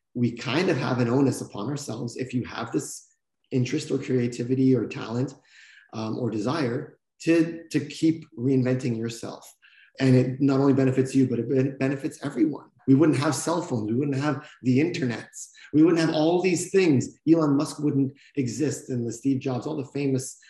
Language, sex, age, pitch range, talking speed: English, male, 30-49, 110-140 Hz, 180 wpm